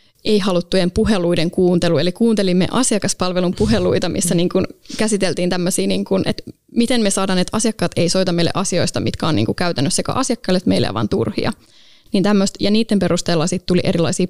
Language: Finnish